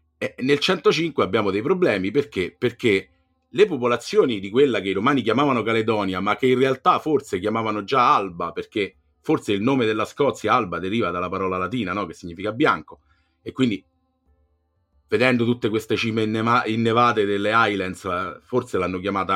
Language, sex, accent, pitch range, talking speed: Italian, male, native, 90-130 Hz, 160 wpm